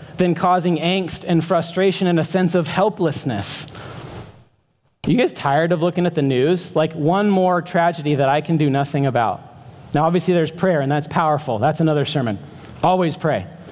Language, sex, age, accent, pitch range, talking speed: English, male, 40-59, American, 140-180 Hz, 175 wpm